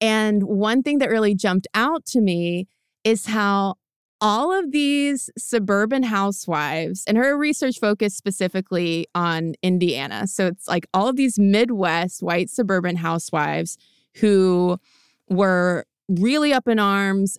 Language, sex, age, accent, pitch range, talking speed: English, female, 20-39, American, 180-220 Hz, 135 wpm